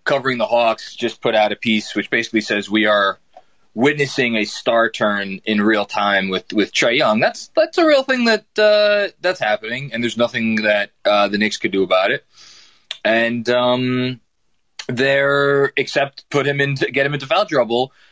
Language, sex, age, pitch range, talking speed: English, male, 20-39, 110-150 Hz, 185 wpm